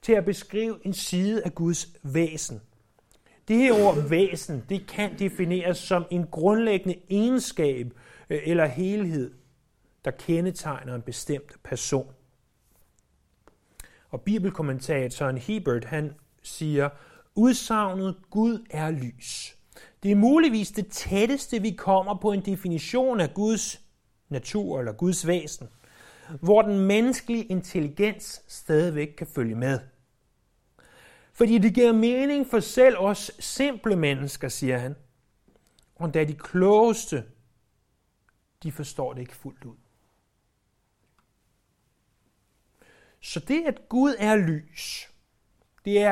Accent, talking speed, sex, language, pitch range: native, 115 wpm, male, Danish, 135-205 Hz